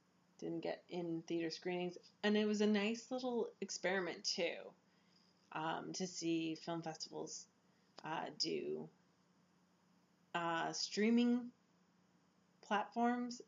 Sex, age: female, 20-39